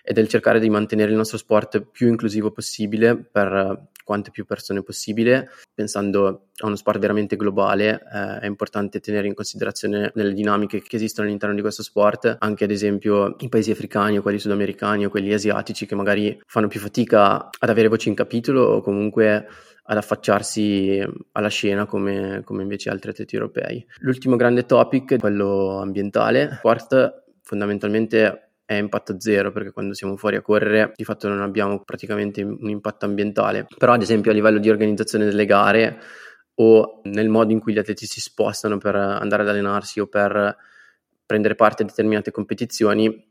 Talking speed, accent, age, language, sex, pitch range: 170 wpm, native, 20-39, Italian, male, 100-110 Hz